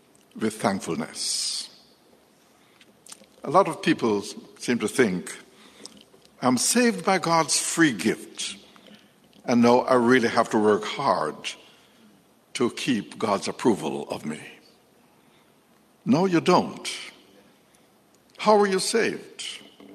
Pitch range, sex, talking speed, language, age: 155-200 Hz, male, 110 wpm, English, 60-79